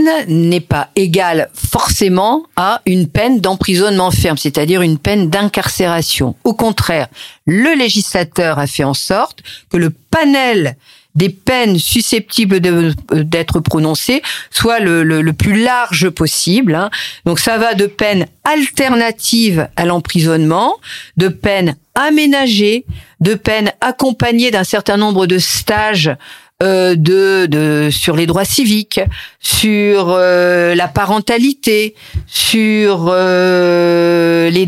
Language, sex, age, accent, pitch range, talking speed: French, female, 50-69, French, 170-215 Hz, 120 wpm